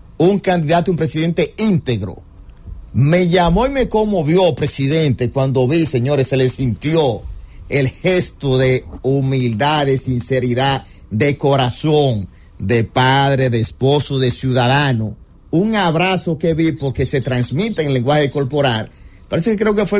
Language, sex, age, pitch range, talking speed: English, male, 50-69, 120-185 Hz, 140 wpm